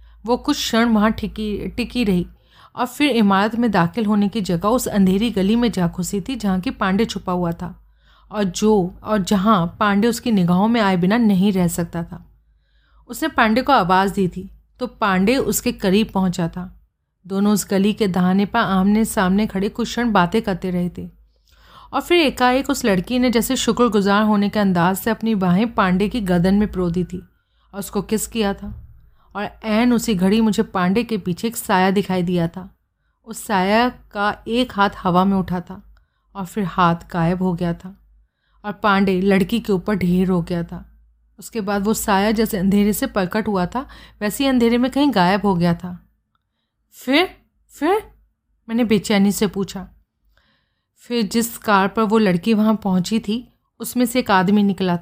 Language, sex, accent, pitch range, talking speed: Hindi, female, native, 185-225 Hz, 185 wpm